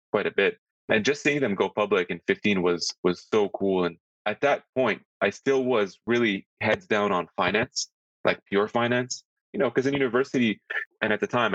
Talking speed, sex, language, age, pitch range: 205 wpm, male, English, 20-39, 90-110 Hz